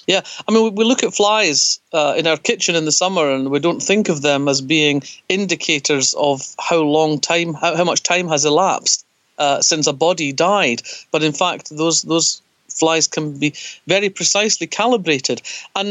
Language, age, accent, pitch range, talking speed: English, 50-69, British, 145-180 Hz, 190 wpm